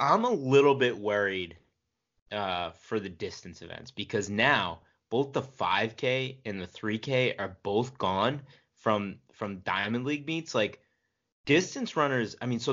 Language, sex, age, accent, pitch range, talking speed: English, male, 20-39, American, 105-135 Hz, 150 wpm